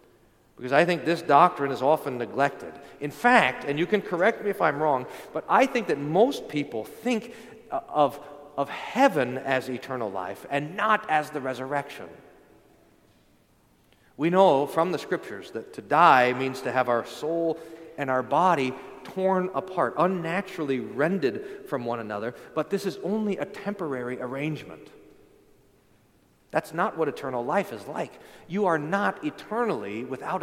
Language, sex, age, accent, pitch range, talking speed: English, male, 40-59, American, 135-205 Hz, 155 wpm